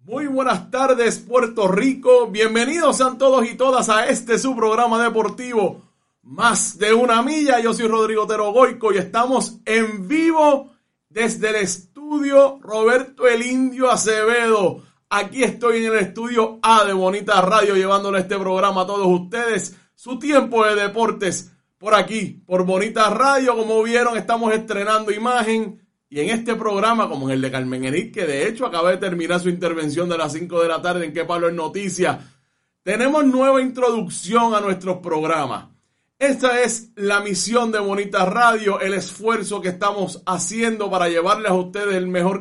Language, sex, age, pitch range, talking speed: Spanish, male, 30-49, 185-235 Hz, 165 wpm